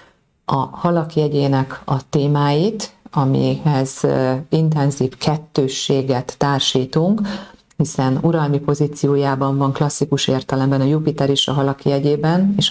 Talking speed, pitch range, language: 105 wpm, 135-155 Hz, Hungarian